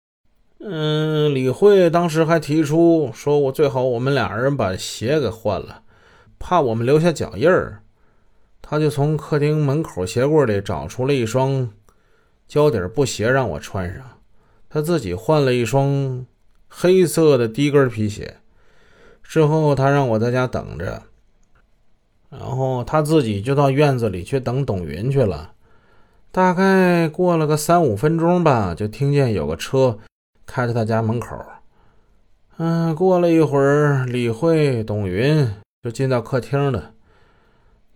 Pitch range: 110-150 Hz